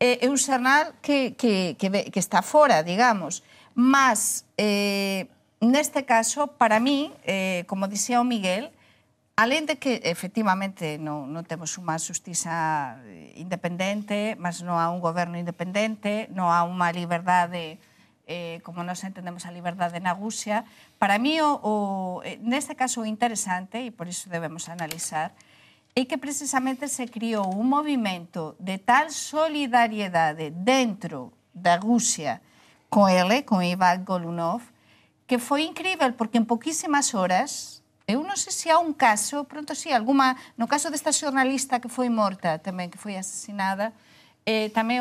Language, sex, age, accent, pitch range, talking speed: Portuguese, female, 50-69, Spanish, 180-260 Hz, 150 wpm